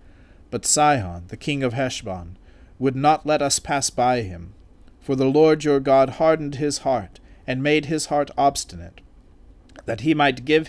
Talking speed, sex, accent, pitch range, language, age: 170 wpm, male, American, 95-140 Hz, English, 40-59